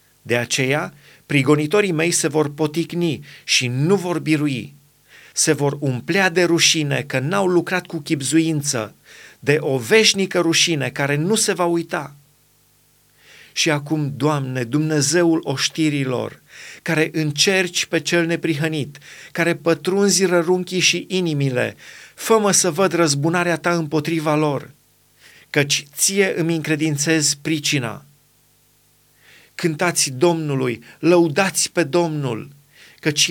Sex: male